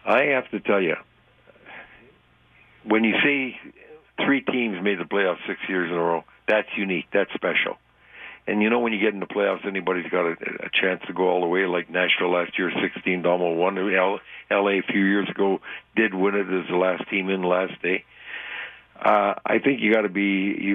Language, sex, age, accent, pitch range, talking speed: English, male, 60-79, American, 95-115 Hz, 200 wpm